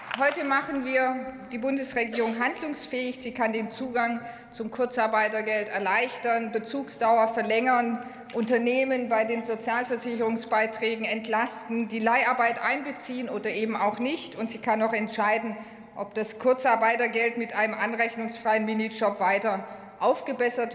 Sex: female